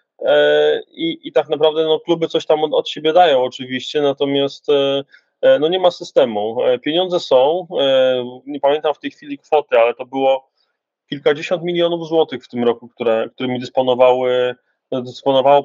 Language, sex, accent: Polish, male, native